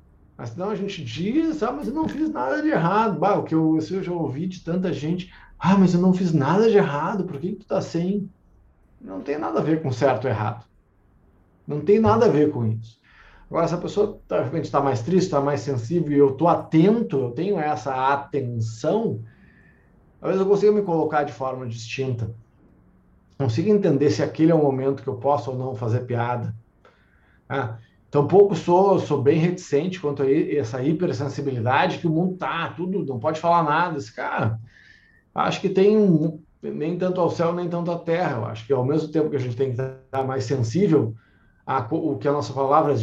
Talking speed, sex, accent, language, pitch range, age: 210 wpm, male, Brazilian, Portuguese, 120-175 Hz, 50-69